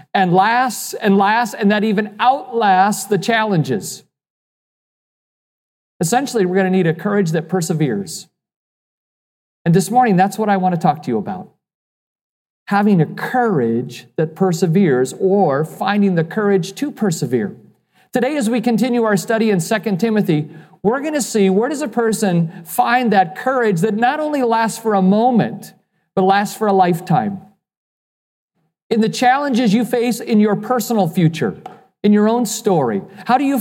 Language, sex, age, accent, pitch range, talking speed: English, male, 40-59, American, 180-220 Hz, 160 wpm